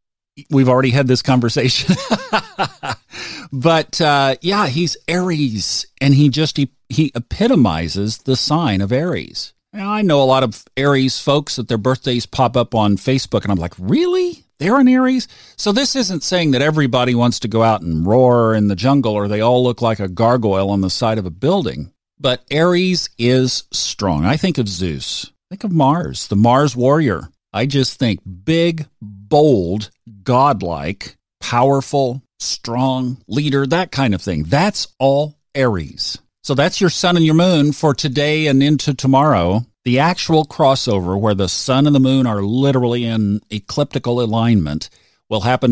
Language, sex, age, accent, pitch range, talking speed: English, male, 50-69, American, 110-150 Hz, 170 wpm